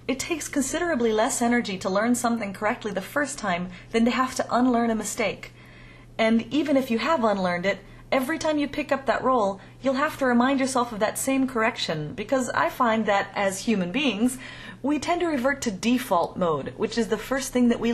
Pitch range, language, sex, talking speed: 215-260 Hz, English, female, 210 wpm